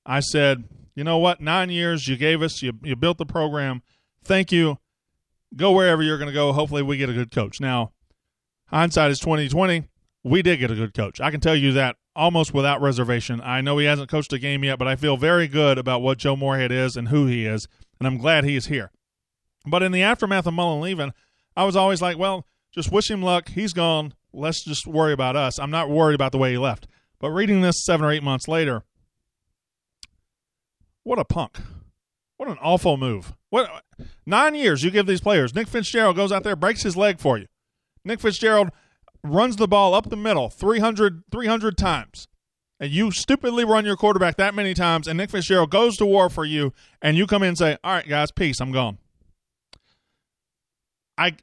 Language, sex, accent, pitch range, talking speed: English, male, American, 135-185 Hz, 210 wpm